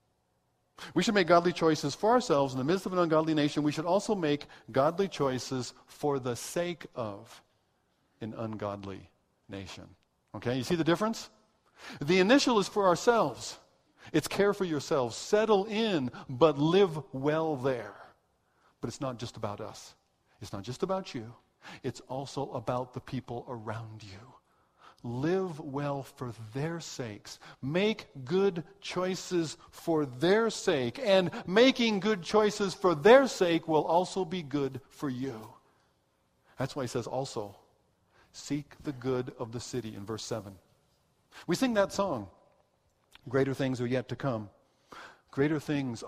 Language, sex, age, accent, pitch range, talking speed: English, male, 50-69, American, 125-185 Hz, 150 wpm